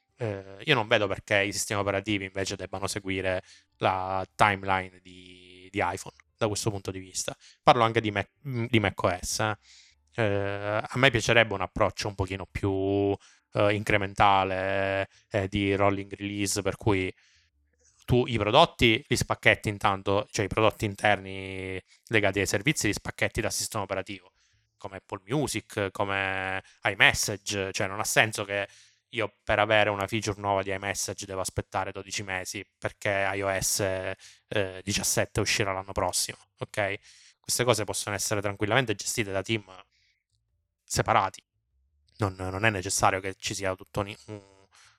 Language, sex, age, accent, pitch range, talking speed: Italian, male, 20-39, native, 95-110 Hz, 145 wpm